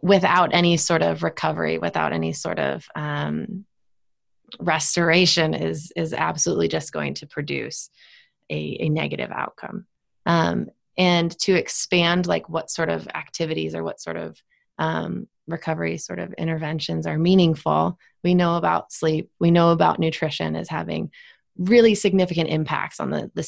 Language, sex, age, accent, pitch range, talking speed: English, female, 20-39, American, 150-180 Hz, 150 wpm